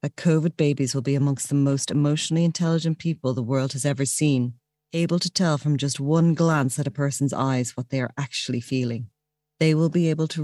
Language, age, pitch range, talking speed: English, 40-59, 125-160 Hz, 215 wpm